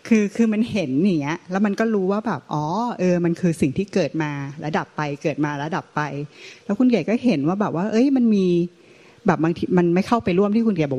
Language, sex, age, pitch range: Thai, female, 30-49, 150-190 Hz